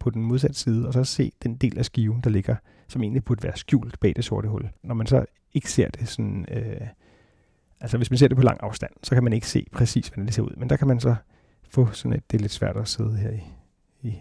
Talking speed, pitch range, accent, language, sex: 275 wpm, 110-125 Hz, native, Danish, male